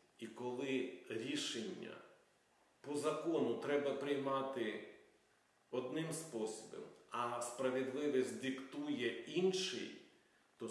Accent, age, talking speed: native, 40-59, 80 wpm